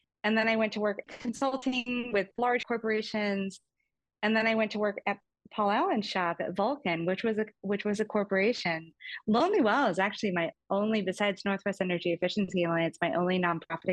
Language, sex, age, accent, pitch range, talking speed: English, female, 30-49, American, 180-225 Hz, 185 wpm